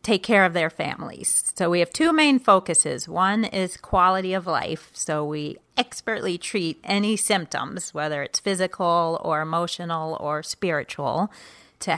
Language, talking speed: English, 150 wpm